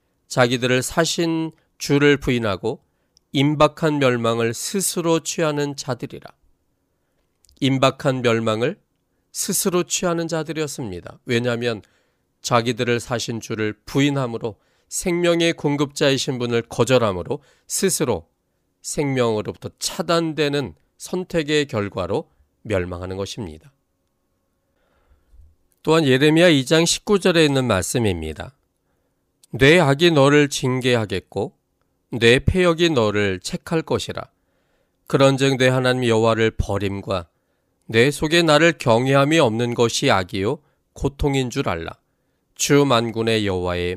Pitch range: 105-155 Hz